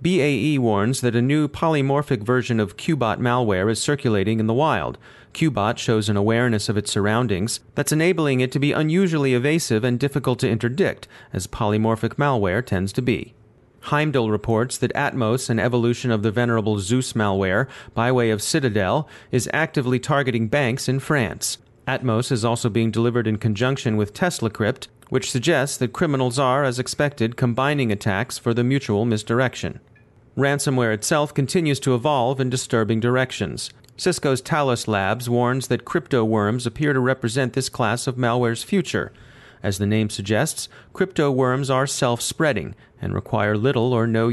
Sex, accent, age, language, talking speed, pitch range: male, American, 40-59, English, 160 wpm, 110-135 Hz